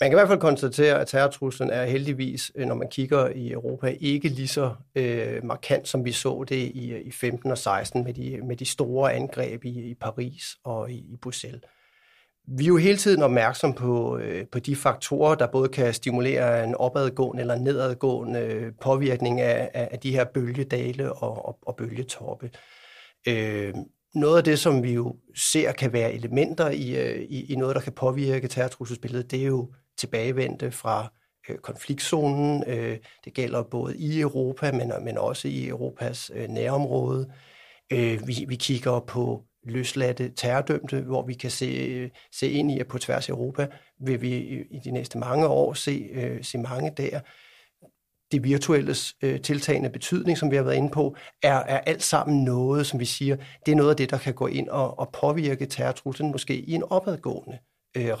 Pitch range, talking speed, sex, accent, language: 125-140 Hz, 180 wpm, male, native, Danish